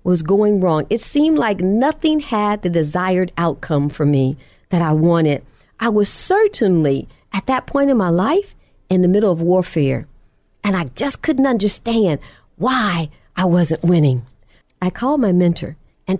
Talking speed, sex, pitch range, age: 165 wpm, female, 175-265 Hz, 50-69